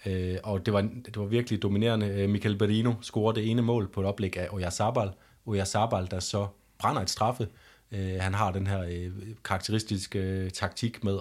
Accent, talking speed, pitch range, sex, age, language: native, 175 wpm, 95-110 Hz, male, 30-49, Danish